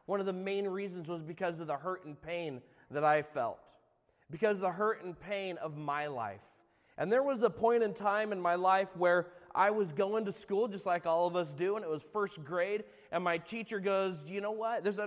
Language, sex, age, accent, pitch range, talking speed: English, male, 30-49, American, 150-200 Hz, 240 wpm